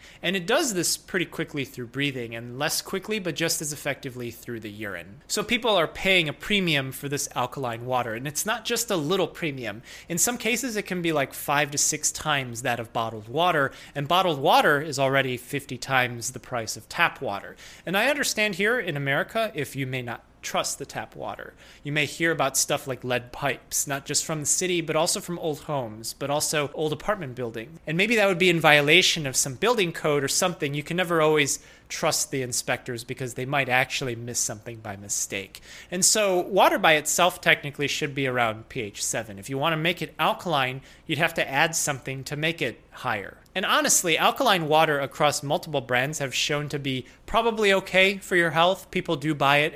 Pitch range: 130-170 Hz